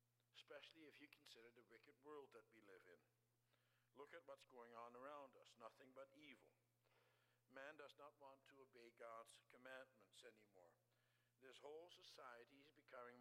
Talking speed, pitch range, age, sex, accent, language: 160 wpm, 120-165 Hz, 60-79, male, American, English